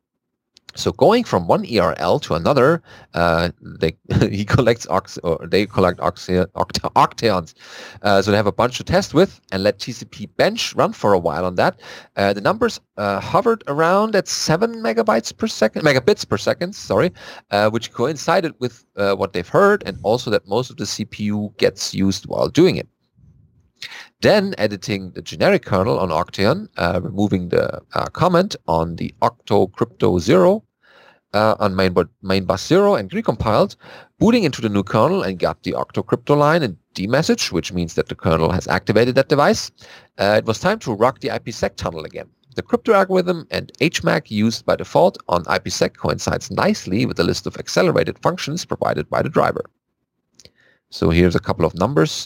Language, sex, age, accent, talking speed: English, male, 40-59, German, 170 wpm